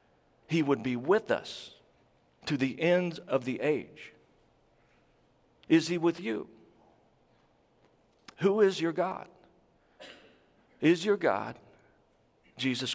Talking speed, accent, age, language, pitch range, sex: 105 wpm, American, 50-69, English, 120-155 Hz, male